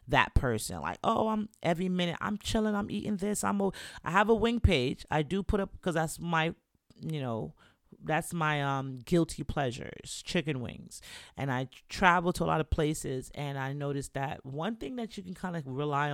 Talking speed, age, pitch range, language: 200 wpm, 30-49, 135-185 Hz, English